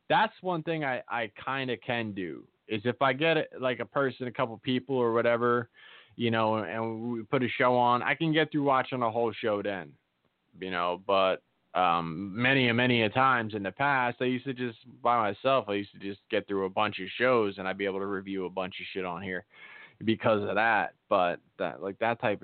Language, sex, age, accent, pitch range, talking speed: English, male, 20-39, American, 100-130 Hz, 235 wpm